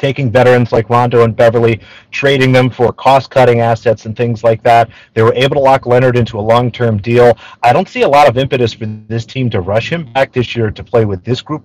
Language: English